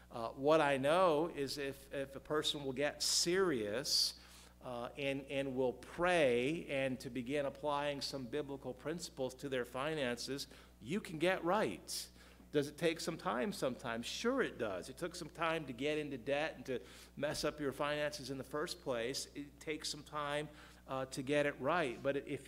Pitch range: 125-155 Hz